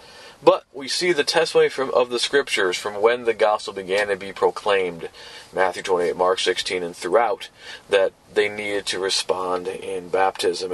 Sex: male